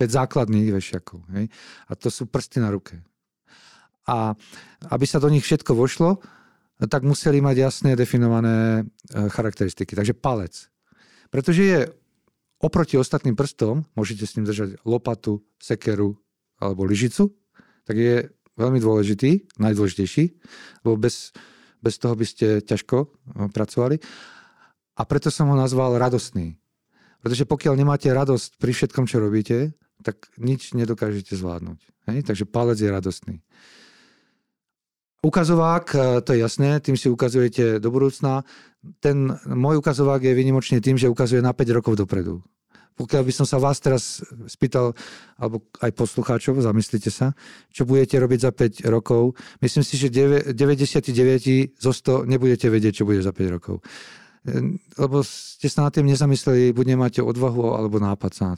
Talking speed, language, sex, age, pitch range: 140 wpm, Slovak, male, 40-59, 110-140 Hz